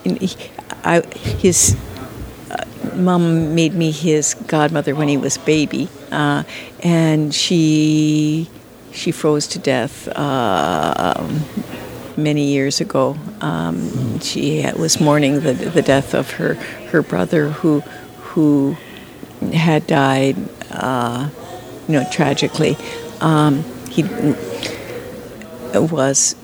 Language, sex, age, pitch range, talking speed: English, female, 60-79, 140-160 Hz, 105 wpm